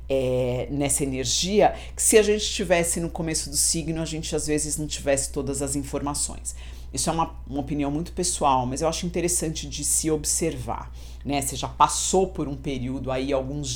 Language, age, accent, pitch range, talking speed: Portuguese, 50-69, Brazilian, 125-155 Hz, 190 wpm